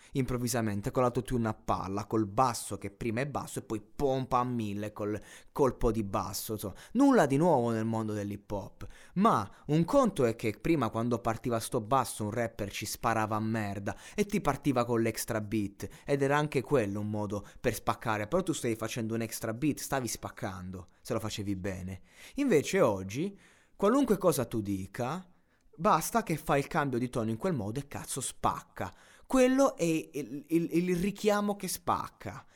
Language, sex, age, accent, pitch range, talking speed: Italian, male, 20-39, native, 105-140 Hz, 180 wpm